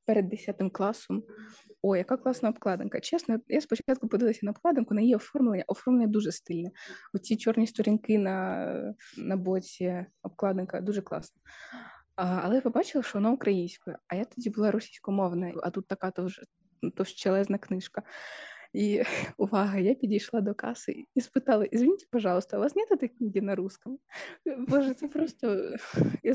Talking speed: 155 wpm